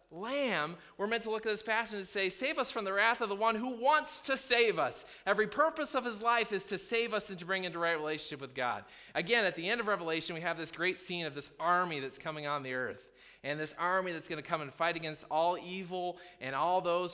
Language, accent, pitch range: English, American, 155-210 Hz